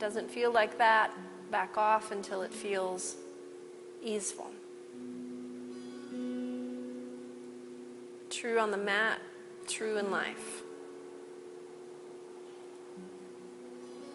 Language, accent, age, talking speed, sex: English, American, 30-49, 70 wpm, female